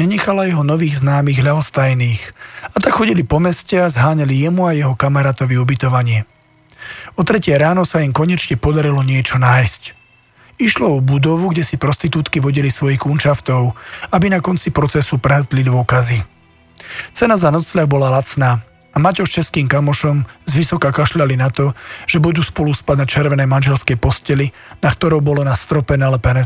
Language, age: Slovak, 40-59